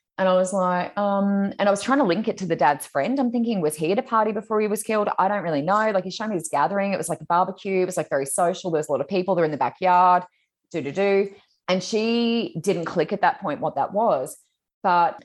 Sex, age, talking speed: female, 20-39, 270 wpm